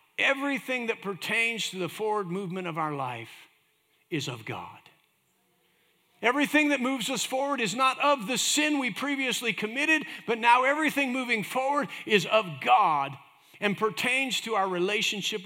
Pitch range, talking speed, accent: 170-240 Hz, 150 wpm, American